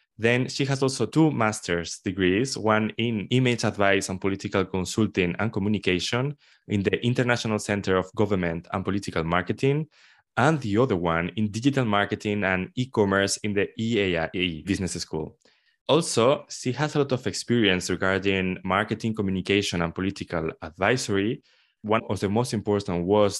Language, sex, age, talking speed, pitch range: English, male, 20-39, 150 wpm, 95-120 Hz